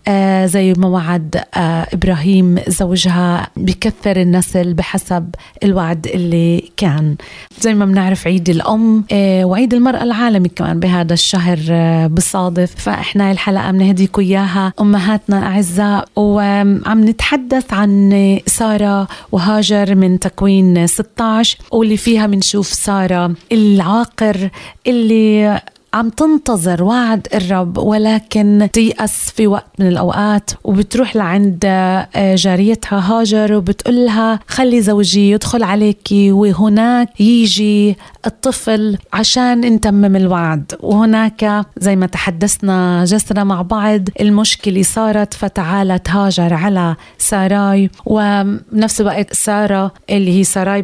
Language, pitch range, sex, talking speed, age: Arabic, 185-215 Hz, female, 100 wpm, 30-49